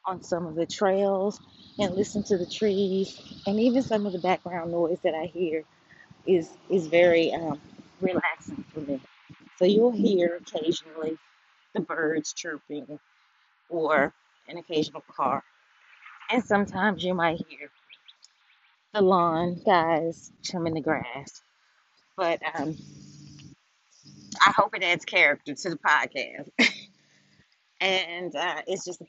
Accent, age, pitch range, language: American, 30-49, 165-200 Hz, English